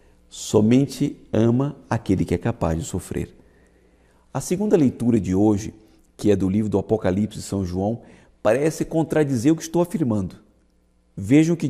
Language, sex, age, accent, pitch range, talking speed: Portuguese, male, 50-69, Brazilian, 95-135 Hz, 160 wpm